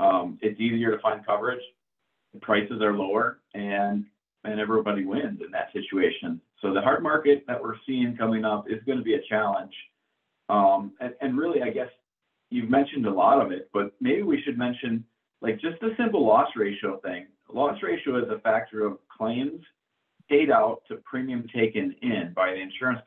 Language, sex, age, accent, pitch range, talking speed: English, male, 40-59, American, 110-145 Hz, 185 wpm